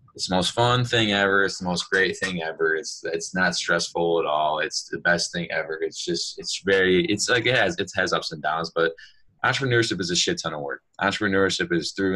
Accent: American